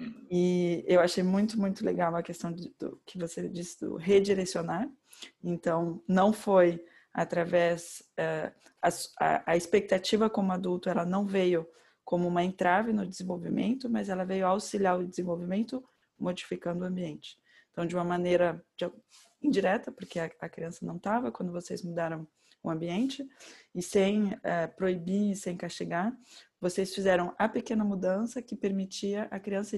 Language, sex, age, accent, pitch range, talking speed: Portuguese, female, 20-39, Brazilian, 175-210 Hz, 150 wpm